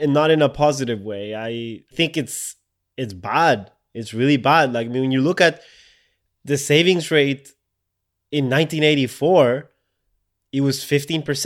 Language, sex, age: English, male, 20-39